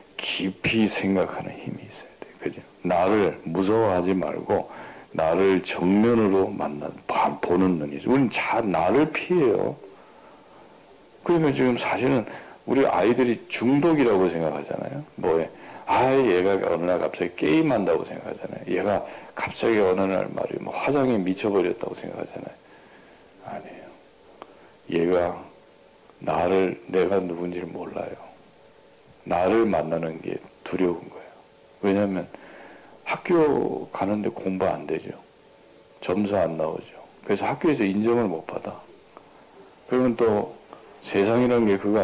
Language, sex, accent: Korean, male, native